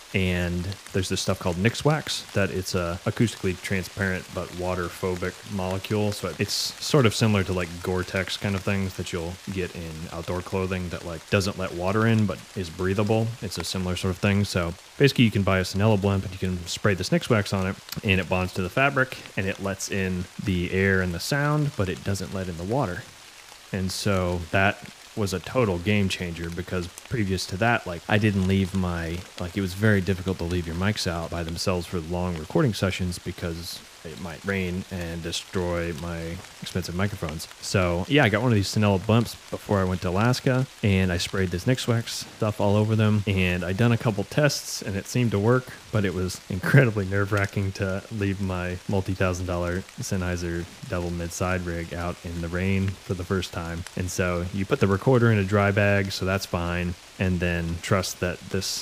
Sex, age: male, 30-49